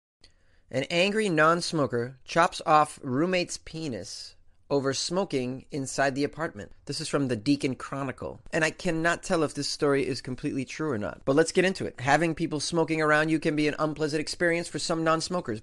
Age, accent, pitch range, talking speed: 30-49, American, 115-155 Hz, 185 wpm